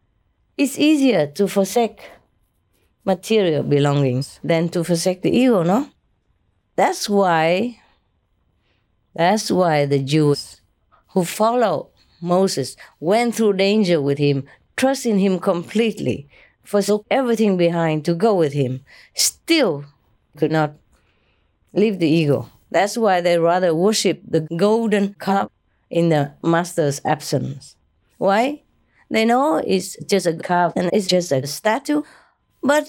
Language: English